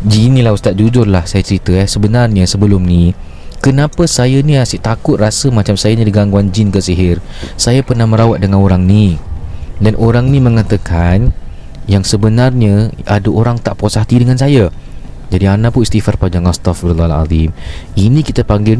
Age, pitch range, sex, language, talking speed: 20-39, 95-125 Hz, male, Malay, 165 wpm